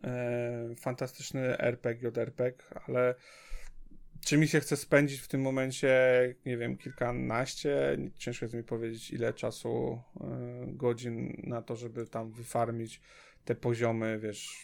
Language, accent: Polish, native